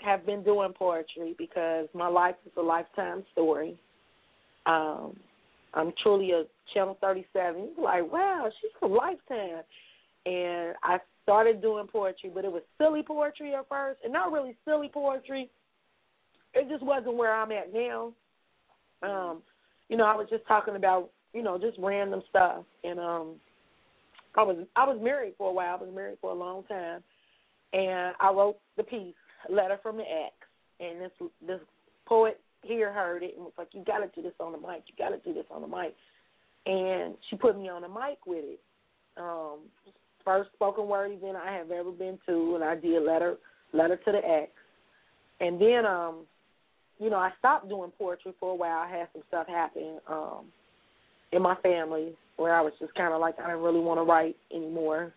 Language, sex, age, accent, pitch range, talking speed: English, female, 30-49, American, 170-220 Hz, 185 wpm